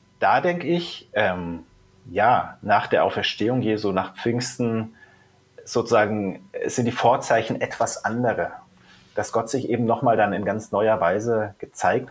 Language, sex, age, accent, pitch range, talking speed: German, male, 30-49, German, 100-125 Hz, 140 wpm